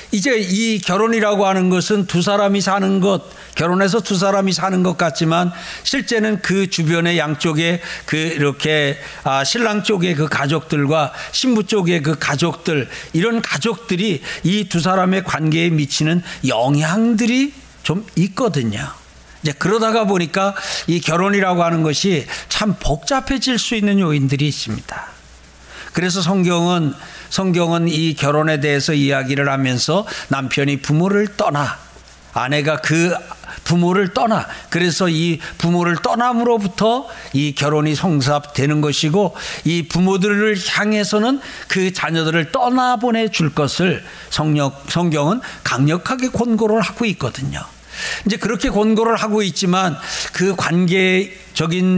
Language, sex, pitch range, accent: Korean, male, 155-205 Hz, native